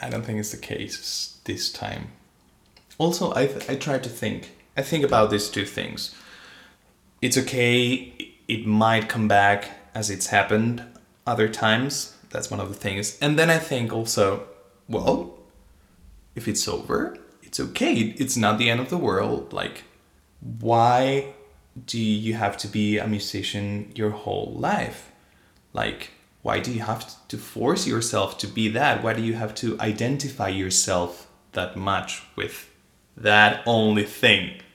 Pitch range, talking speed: 100-115 Hz, 155 wpm